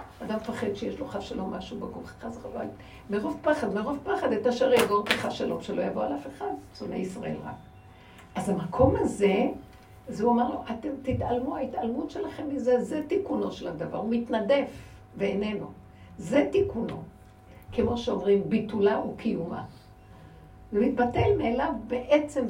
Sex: female